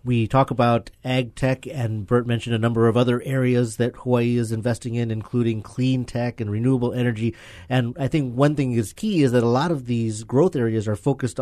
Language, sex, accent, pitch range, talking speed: English, male, American, 110-135 Hz, 215 wpm